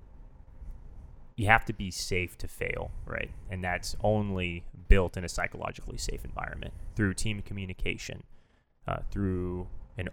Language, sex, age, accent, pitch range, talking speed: English, male, 20-39, American, 85-95 Hz, 135 wpm